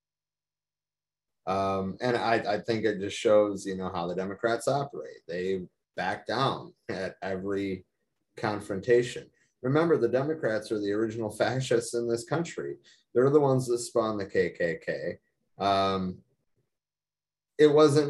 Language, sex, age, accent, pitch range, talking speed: English, male, 30-49, American, 95-135 Hz, 135 wpm